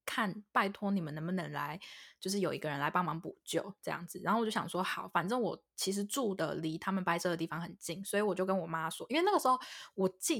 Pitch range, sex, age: 175-210 Hz, female, 10-29